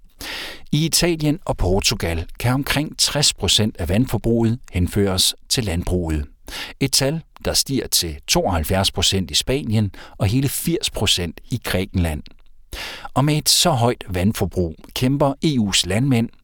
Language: Danish